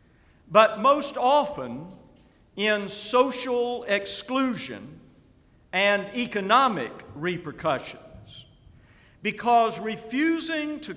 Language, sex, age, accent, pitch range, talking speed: English, male, 50-69, American, 180-240 Hz, 65 wpm